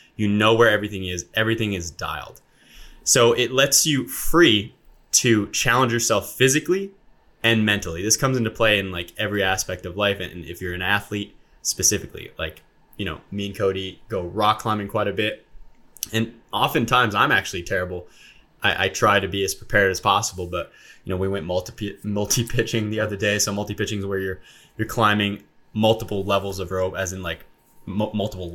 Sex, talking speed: male, 180 wpm